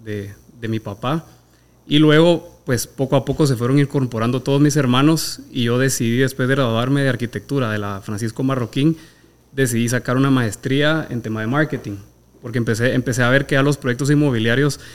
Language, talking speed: Spanish, 185 wpm